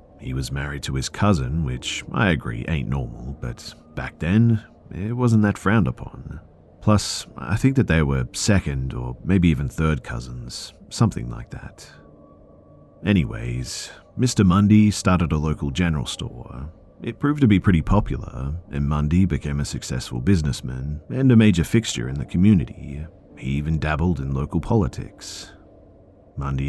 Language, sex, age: English, male, 40-59